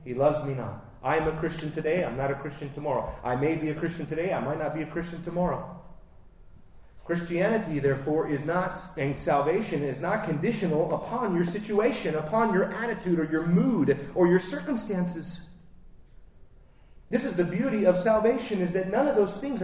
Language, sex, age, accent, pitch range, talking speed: English, male, 30-49, American, 150-205 Hz, 185 wpm